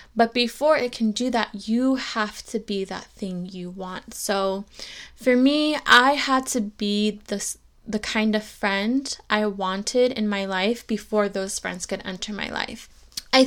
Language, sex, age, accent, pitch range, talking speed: English, female, 20-39, American, 210-250 Hz, 175 wpm